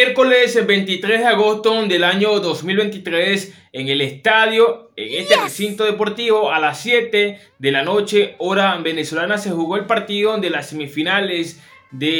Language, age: English, 20-39